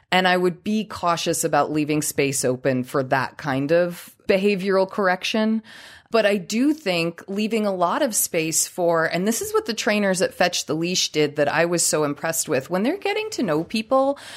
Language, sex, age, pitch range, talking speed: English, female, 30-49, 150-205 Hz, 200 wpm